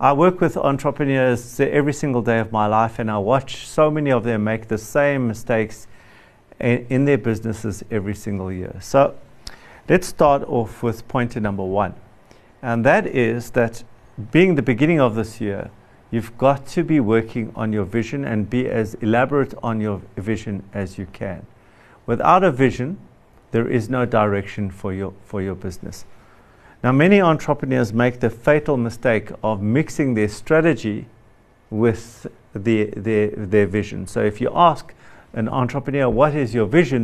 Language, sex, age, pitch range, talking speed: English, male, 50-69, 105-135 Hz, 165 wpm